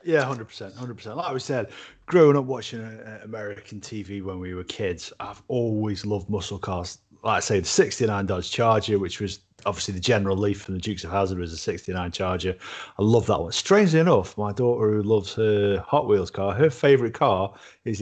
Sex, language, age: male, English, 30-49